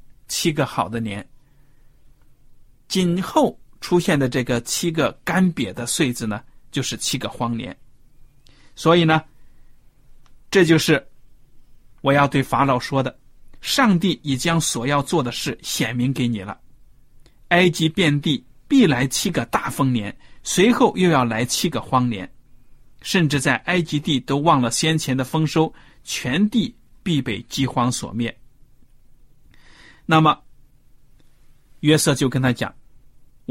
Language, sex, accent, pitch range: Chinese, male, native, 125-150 Hz